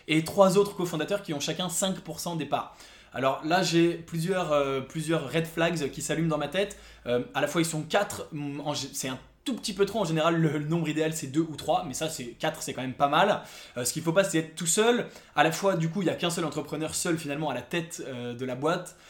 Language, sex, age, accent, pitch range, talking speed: English, male, 20-39, French, 140-170 Hz, 265 wpm